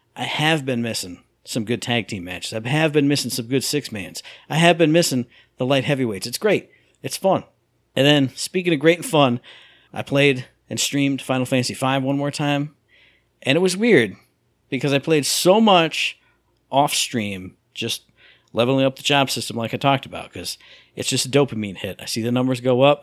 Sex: male